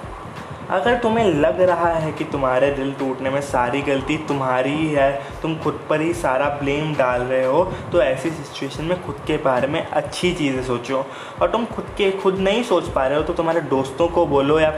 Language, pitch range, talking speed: Hindi, 135-175 Hz, 205 wpm